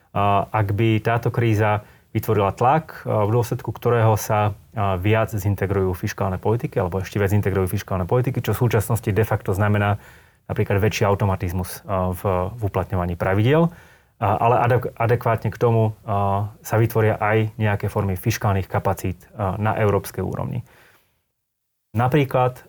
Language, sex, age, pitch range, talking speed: Slovak, male, 30-49, 100-120 Hz, 125 wpm